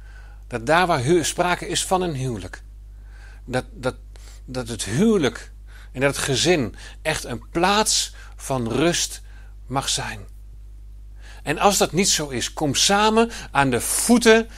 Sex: male